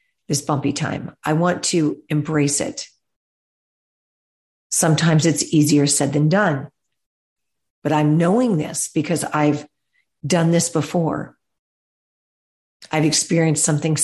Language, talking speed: English, 110 wpm